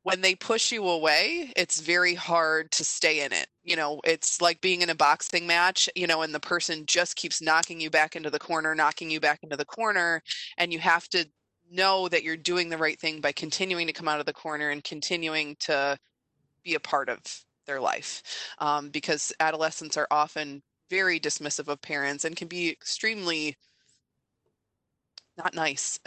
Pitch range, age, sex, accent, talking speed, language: 155-180 Hz, 20-39, female, American, 190 wpm, English